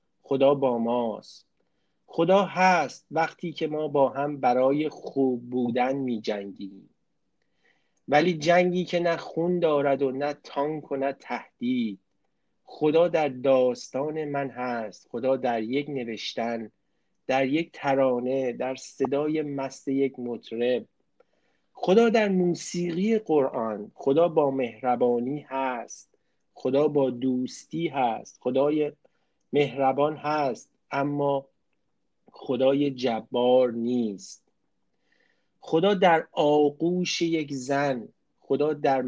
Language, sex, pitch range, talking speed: Persian, male, 125-155 Hz, 105 wpm